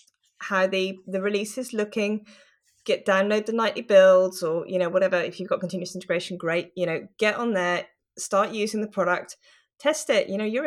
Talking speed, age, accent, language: 195 wpm, 20-39, British, English